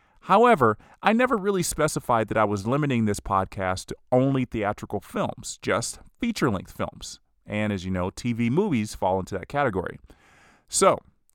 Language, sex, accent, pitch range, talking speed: English, male, American, 100-135 Hz, 155 wpm